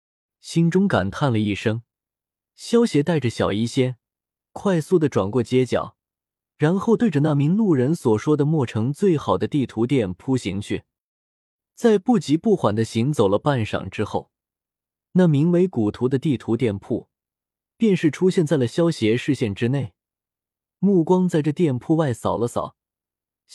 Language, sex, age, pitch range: Chinese, male, 20-39, 115-170 Hz